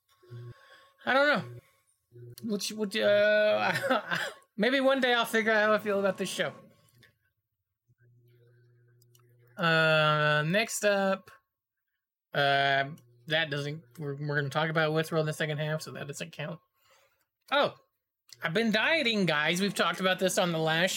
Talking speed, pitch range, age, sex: 150 wpm, 155-220 Hz, 20-39, male